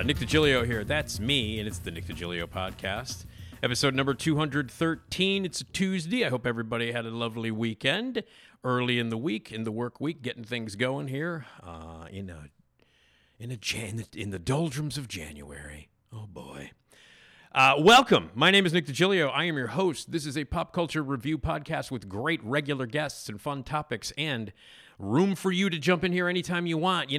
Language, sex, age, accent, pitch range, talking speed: English, male, 50-69, American, 110-165 Hz, 180 wpm